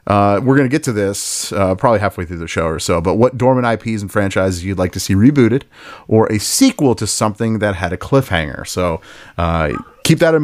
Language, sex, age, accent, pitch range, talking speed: English, male, 30-49, American, 105-140 Hz, 230 wpm